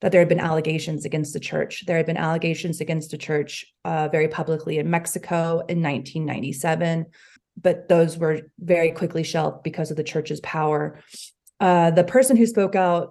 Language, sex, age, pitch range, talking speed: English, female, 30-49, 155-175 Hz, 180 wpm